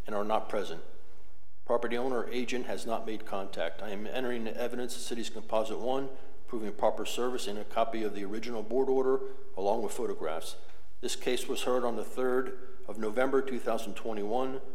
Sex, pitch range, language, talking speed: male, 110-125 Hz, English, 185 wpm